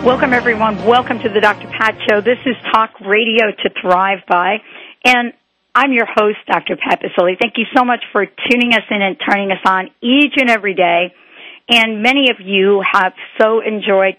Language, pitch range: English, 185-220 Hz